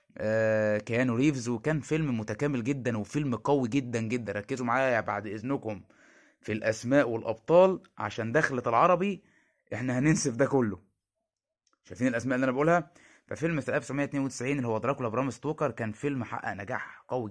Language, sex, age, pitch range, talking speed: Arabic, male, 20-39, 115-145 Hz, 145 wpm